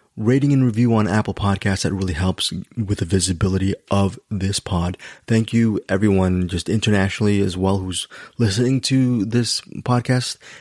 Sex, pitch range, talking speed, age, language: male, 95-125 Hz, 155 wpm, 20-39, English